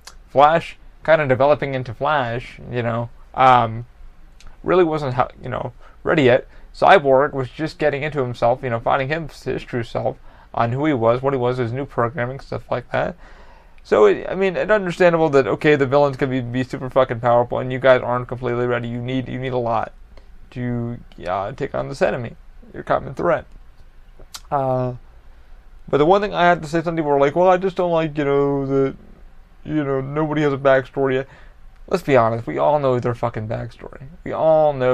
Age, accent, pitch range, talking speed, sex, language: 30-49, American, 120-145 Hz, 200 wpm, male, English